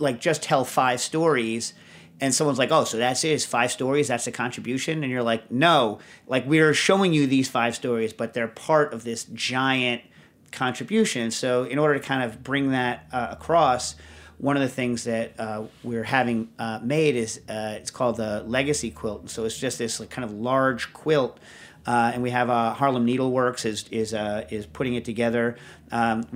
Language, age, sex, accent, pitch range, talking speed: English, 40-59, male, American, 110-125 Hz, 200 wpm